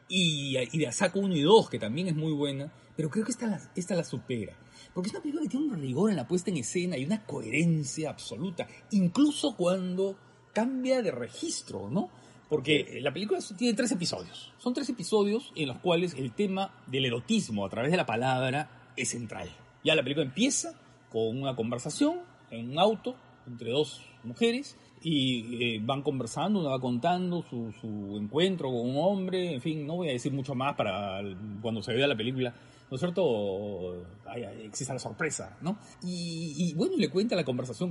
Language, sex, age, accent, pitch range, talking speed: Spanish, male, 40-59, Mexican, 125-195 Hz, 190 wpm